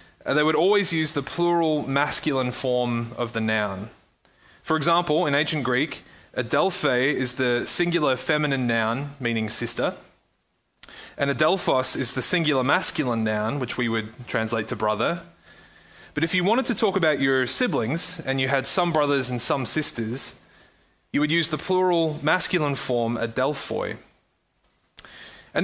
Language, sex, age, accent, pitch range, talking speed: English, male, 20-39, Australian, 120-155 Hz, 150 wpm